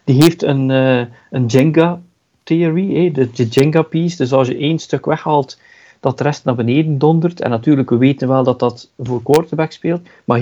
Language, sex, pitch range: Dutch, male, 130-165 Hz